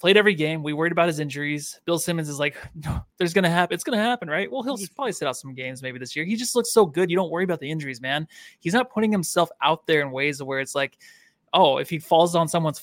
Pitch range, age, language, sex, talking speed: 145-180 Hz, 20-39, English, male, 280 wpm